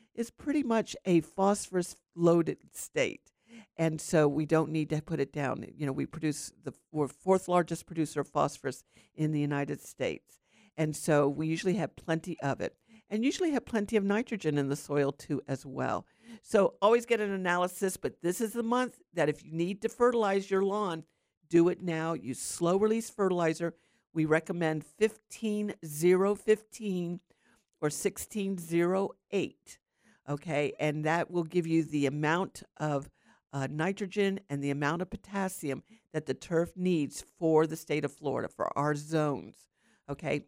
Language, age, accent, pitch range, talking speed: English, 50-69, American, 150-200 Hz, 165 wpm